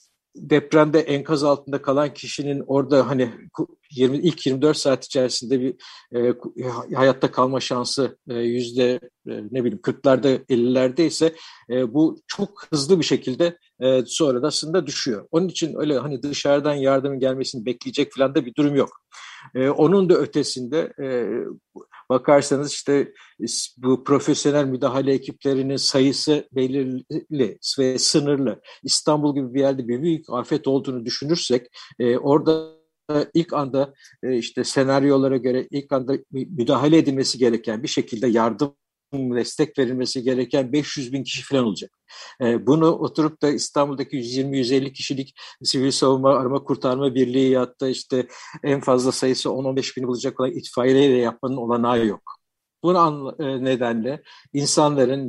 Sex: male